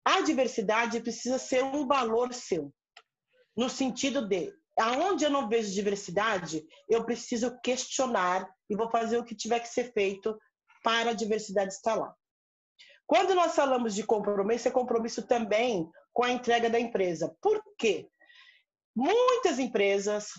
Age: 40-59